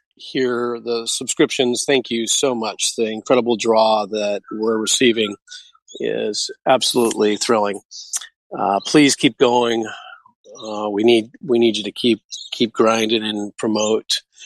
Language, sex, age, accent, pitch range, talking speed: English, male, 40-59, American, 110-125 Hz, 135 wpm